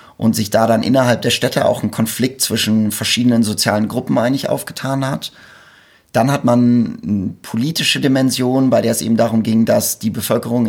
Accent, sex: German, male